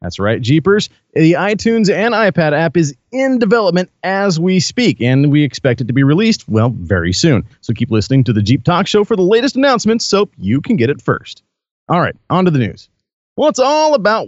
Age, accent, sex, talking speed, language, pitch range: 40-59, American, male, 220 wpm, English, 125-190 Hz